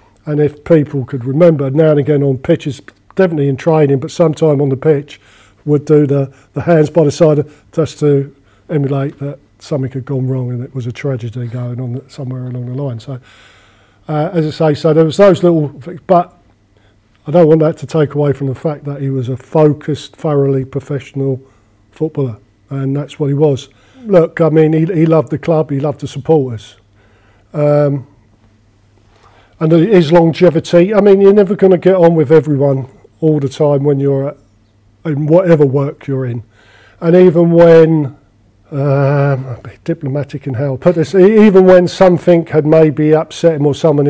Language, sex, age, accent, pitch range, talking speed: English, male, 40-59, British, 130-160 Hz, 190 wpm